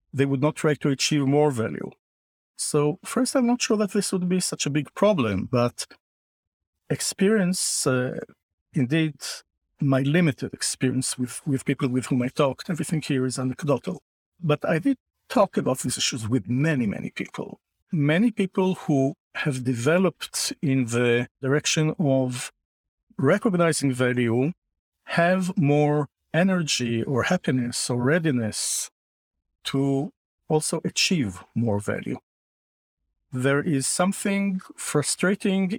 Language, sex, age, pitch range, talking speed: English, male, 50-69, 130-175 Hz, 130 wpm